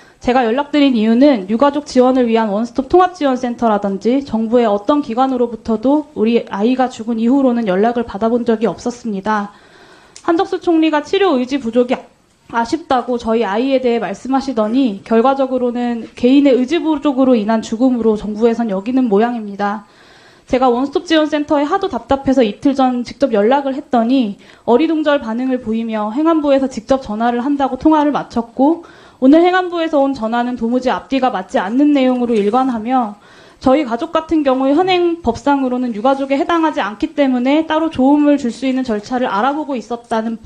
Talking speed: 125 wpm